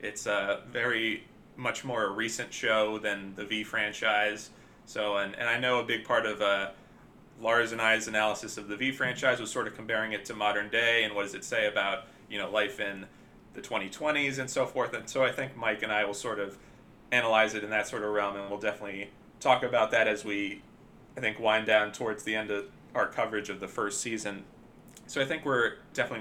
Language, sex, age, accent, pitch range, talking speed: English, male, 30-49, American, 105-125 Hz, 220 wpm